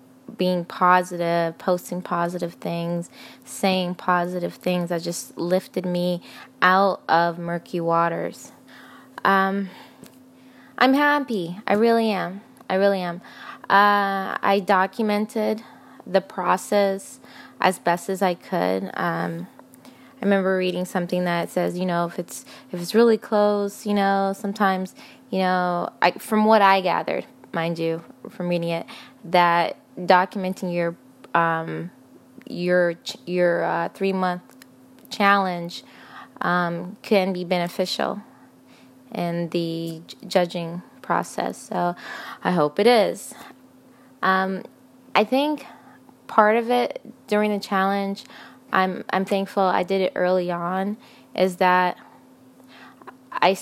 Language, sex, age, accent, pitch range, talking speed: English, female, 20-39, American, 175-210 Hz, 120 wpm